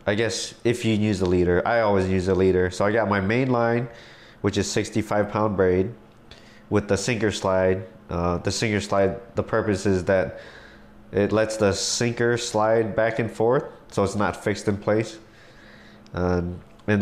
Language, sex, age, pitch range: English, male, 20-39, 95-110 Hz